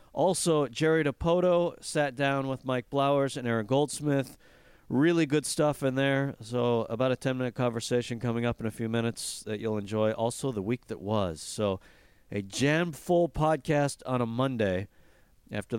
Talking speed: 170 wpm